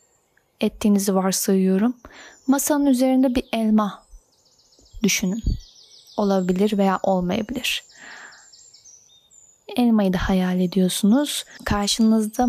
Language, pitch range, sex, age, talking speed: Turkish, 195-235 Hz, female, 10-29, 70 wpm